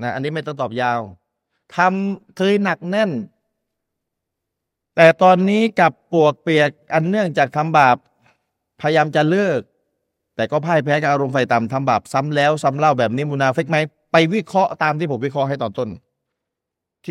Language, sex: Thai, male